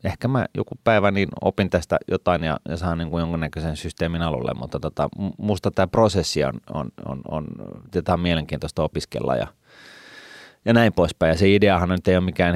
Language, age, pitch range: Finnish, 30-49, 75-85 Hz